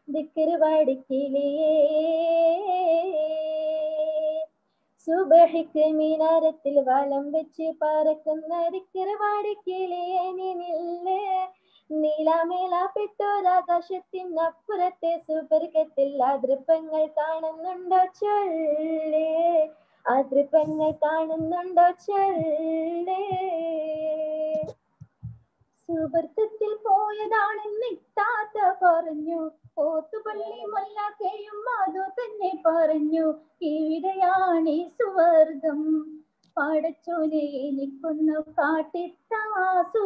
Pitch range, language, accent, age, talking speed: 310-365 Hz, Malayalam, native, 20-39, 40 wpm